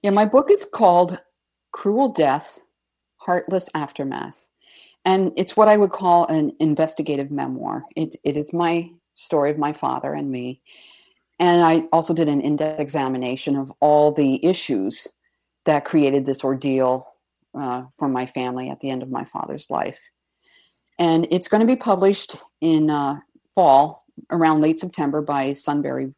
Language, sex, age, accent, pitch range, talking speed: English, female, 50-69, American, 140-170 Hz, 155 wpm